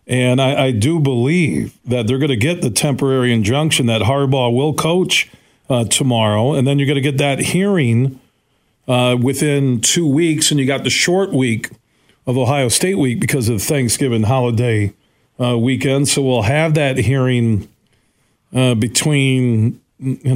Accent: American